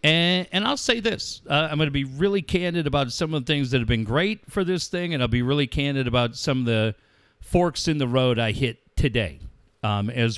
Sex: male